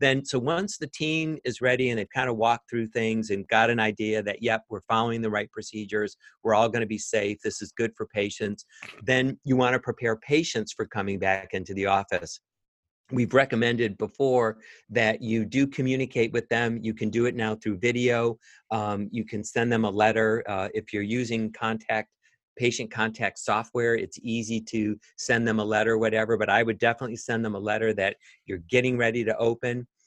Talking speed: 200 wpm